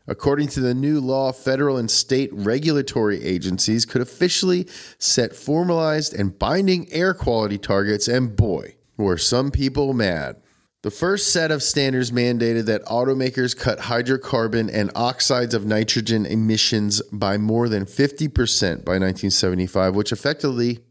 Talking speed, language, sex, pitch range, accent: 135 wpm, English, male, 110-130 Hz, American